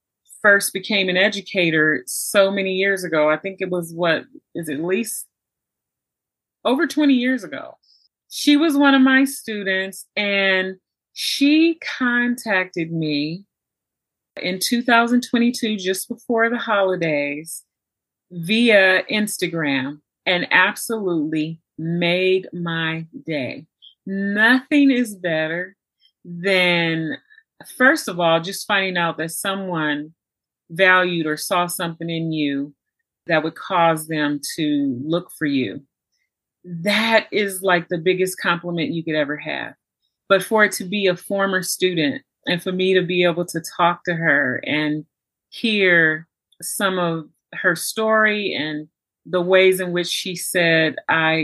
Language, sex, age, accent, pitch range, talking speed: English, female, 30-49, American, 160-200 Hz, 130 wpm